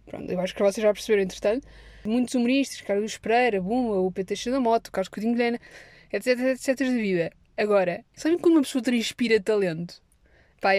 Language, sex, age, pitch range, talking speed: Portuguese, female, 20-39, 205-265 Hz, 195 wpm